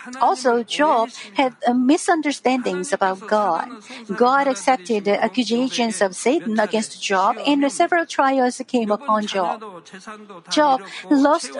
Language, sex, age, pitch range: Korean, female, 50-69, 225-290 Hz